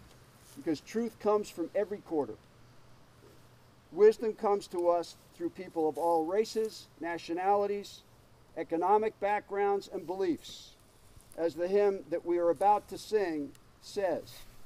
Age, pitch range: 50-69, 155-215 Hz